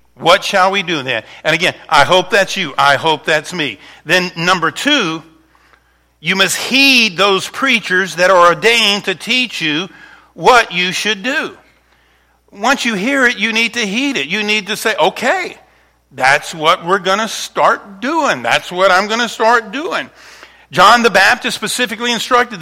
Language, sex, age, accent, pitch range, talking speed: English, male, 50-69, American, 145-210 Hz, 175 wpm